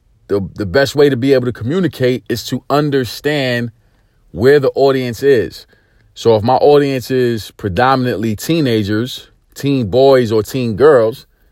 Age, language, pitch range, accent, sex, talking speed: 40-59, English, 105-130 Hz, American, male, 145 wpm